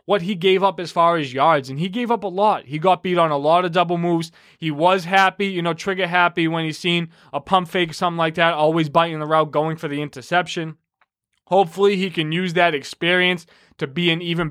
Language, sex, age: English, male, 20-39